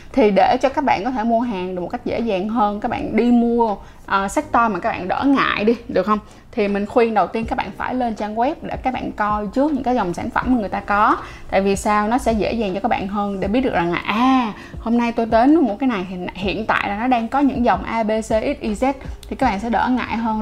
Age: 20-39